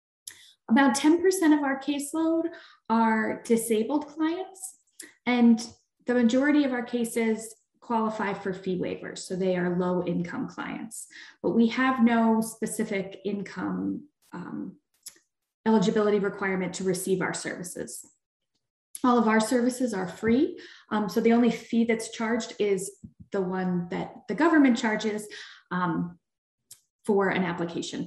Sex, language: female, English